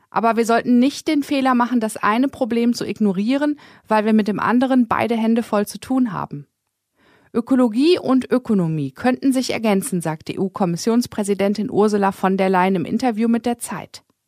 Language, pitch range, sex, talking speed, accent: German, 195-260 Hz, female, 170 wpm, German